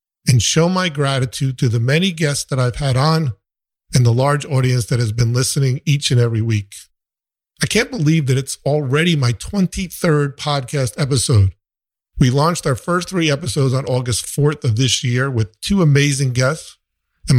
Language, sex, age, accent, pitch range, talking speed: English, male, 50-69, American, 120-150 Hz, 175 wpm